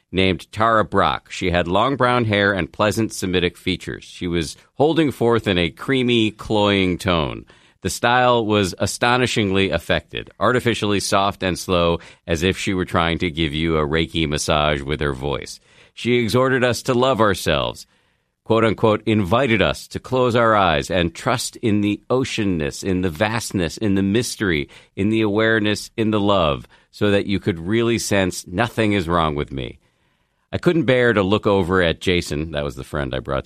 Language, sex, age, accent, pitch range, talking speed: English, male, 50-69, American, 85-115 Hz, 180 wpm